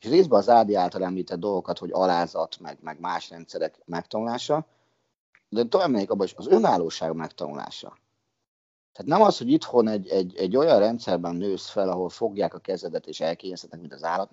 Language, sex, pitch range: Hungarian, male, 85-115 Hz